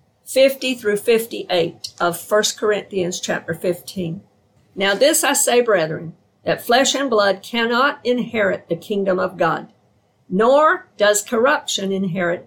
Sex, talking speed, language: female, 130 wpm, English